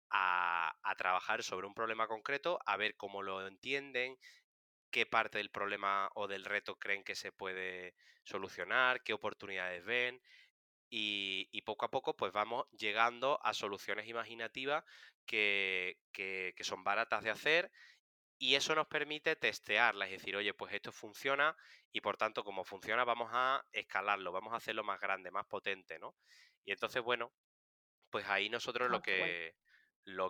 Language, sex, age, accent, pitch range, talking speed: Spanish, male, 20-39, Spanish, 95-130 Hz, 160 wpm